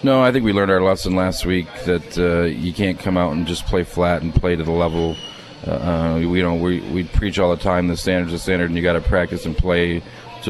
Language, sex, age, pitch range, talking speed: English, male, 40-59, 80-90 Hz, 255 wpm